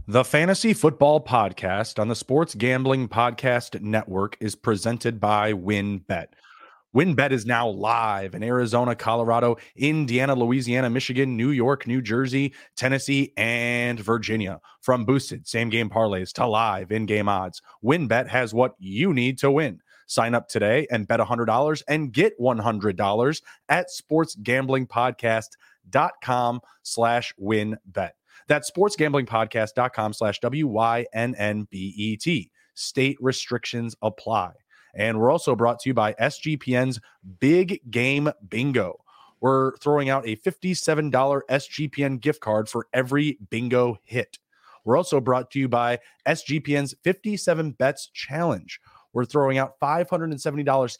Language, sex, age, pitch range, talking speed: English, male, 30-49, 115-140 Hz, 130 wpm